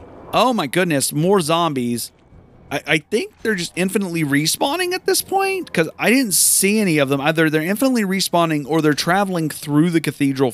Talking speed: 180 wpm